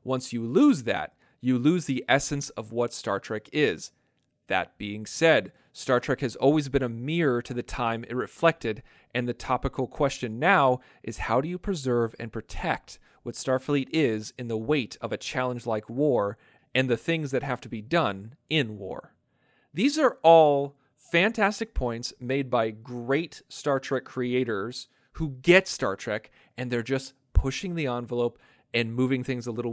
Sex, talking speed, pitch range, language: male, 175 wpm, 120-160 Hz, English